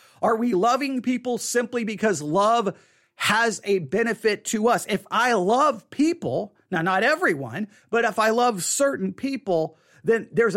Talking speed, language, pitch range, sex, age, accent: 140 wpm, English, 190-240 Hz, male, 40-59, American